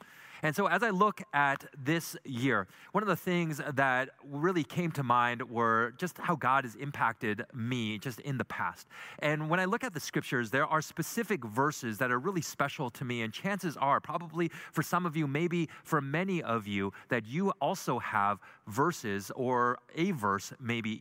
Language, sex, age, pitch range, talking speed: English, male, 30-49, 120-165 Hz, 190 wpm